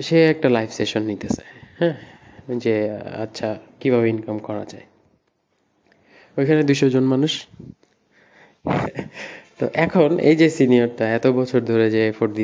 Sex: male